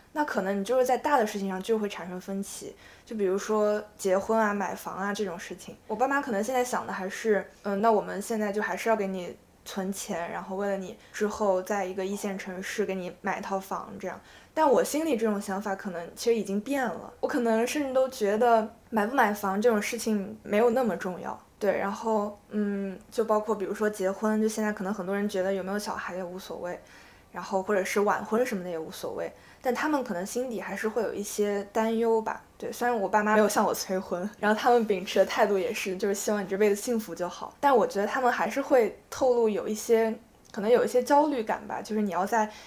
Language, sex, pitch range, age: Chinese, female, 195-235 Hz, 20-39